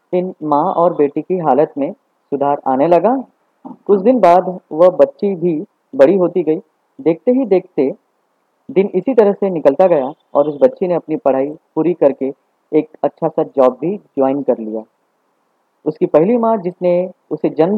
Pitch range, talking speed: 145-200 Hz, 165 wpm